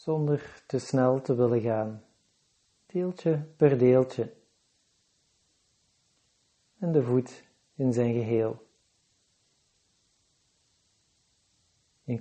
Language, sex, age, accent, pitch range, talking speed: Dutch, male, 40-59, Dutch, 110-145 Hz, 80 wpm